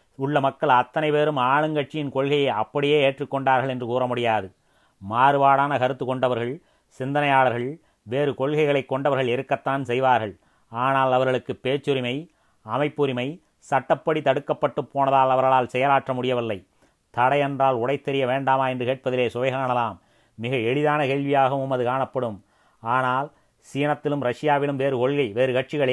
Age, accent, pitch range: 30-49, native, 125-145 Hz